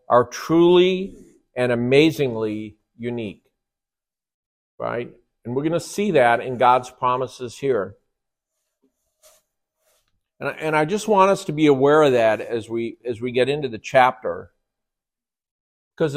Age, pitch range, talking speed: 50-69, 125-160 Hz, 125 wpm